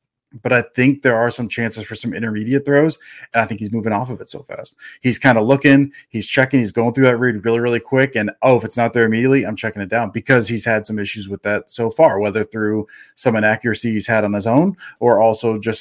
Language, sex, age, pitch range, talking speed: English, male, 30-49, 110-130 Hz, 255 wpm